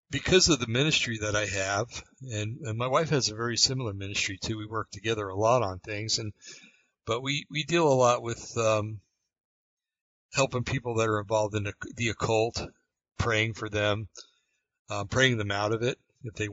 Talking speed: 190 wpm